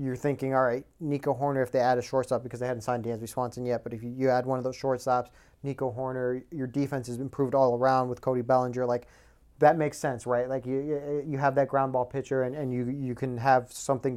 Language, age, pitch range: English, 30-49, 120-140 Hz